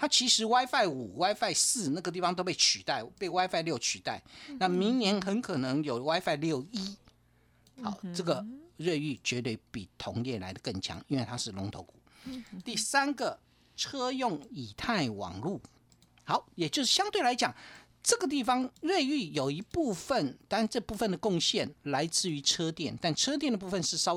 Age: 50-69